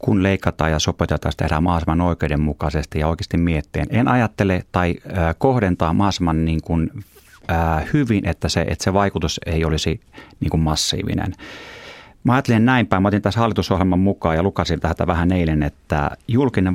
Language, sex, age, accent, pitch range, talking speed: Finnish, male, 30-49, native, 80-100 Hz, 155 wpm